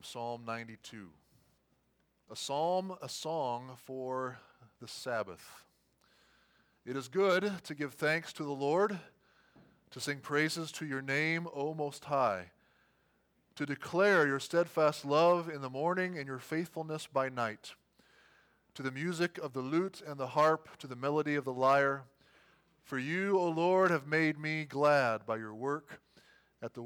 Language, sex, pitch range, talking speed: English, male, 130-165 Hz, 150 wpm